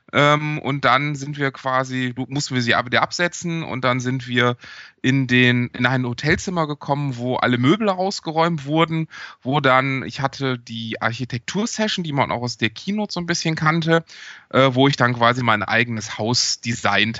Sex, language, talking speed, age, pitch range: male, German, 180 wpm, 20-39, 115-140 Hz